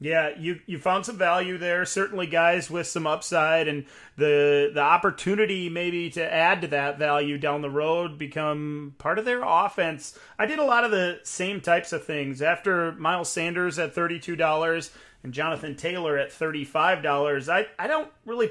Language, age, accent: English, 30-49, American